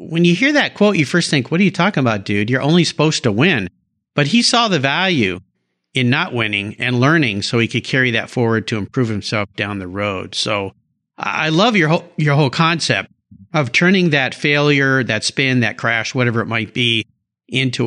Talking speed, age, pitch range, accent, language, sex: 205 wpm, 50-69, 115-160 Hz, American, English, male